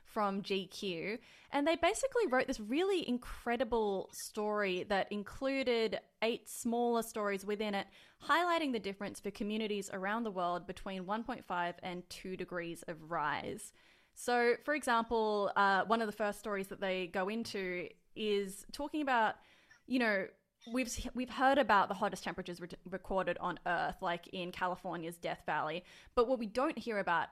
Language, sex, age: English, female, 20-39